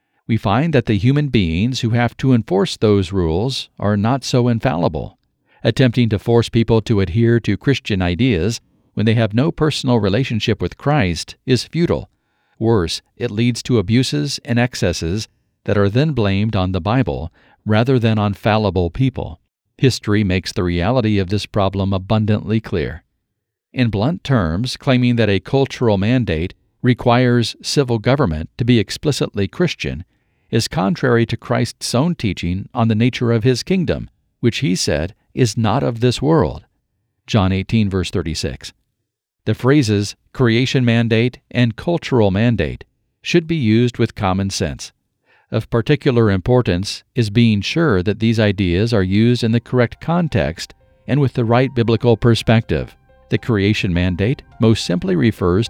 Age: 50-69